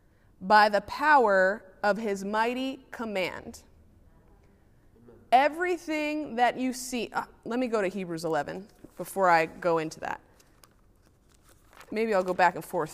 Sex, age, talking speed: female, 30-49, 135 wpm